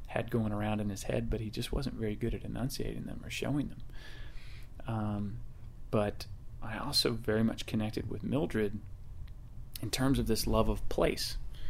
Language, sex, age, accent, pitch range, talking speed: English, male, 30-49, American, 105-120 Hz, 175 wpm